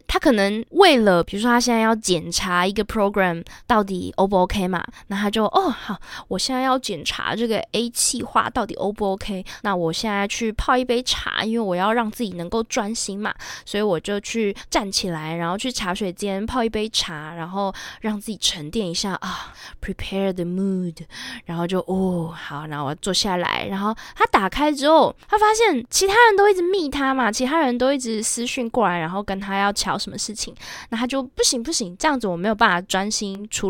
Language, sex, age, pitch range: Chinese, female, 20-39, 195-270 Hz